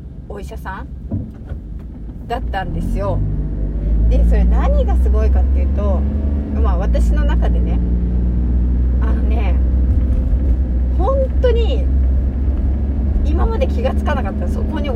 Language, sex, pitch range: Japanese, female, 65-75 Hz